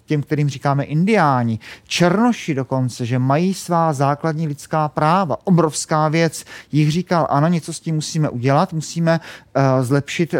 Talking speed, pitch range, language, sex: 145 wpm, 145-180 Hz, Czech, male